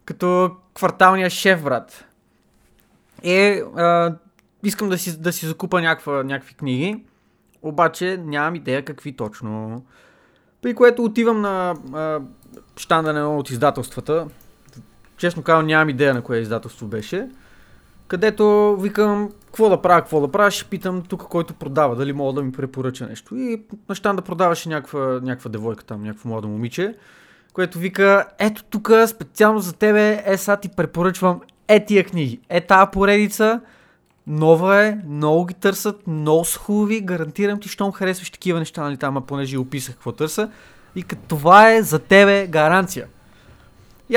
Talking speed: 150 wpm